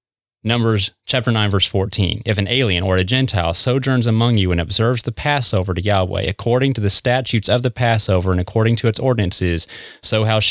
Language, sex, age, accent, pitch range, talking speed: English, male, 30-49, American, 95-115 Hz, 190 wpm